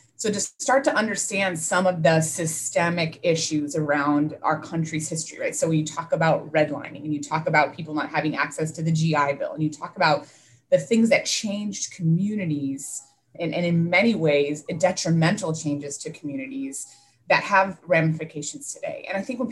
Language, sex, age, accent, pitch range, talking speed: English, female, 20-39, American, 155-215 Hz, 180 wpm